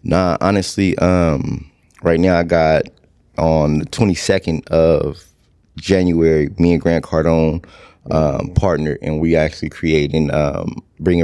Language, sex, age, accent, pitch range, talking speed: English, male, 20-39, American, 75-85 Hz, 130 wpm